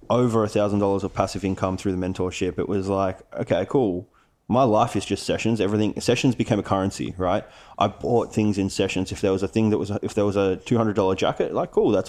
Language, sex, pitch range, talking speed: English, male, 95-110 Hz, 245 wpm